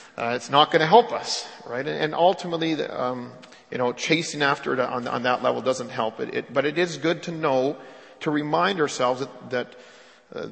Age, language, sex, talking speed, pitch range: 40-59, English, male, 215 wpm, 130-160 Hz